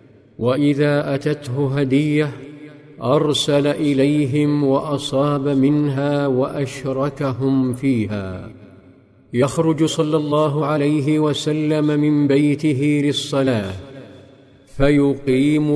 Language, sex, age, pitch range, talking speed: Arabic, male, 50-69, 135-145 Hz, 70 wpm